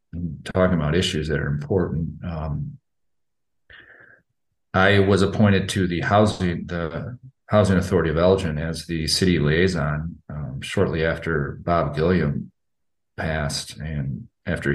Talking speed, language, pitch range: 120 wpm, English, 80-95 Hz